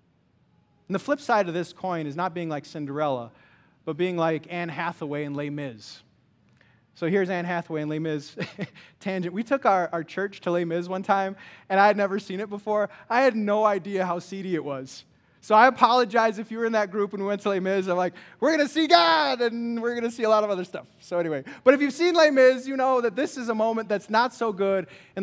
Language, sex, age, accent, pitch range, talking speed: English, male, 20-39, American, 165-220 Hz, 250 wpm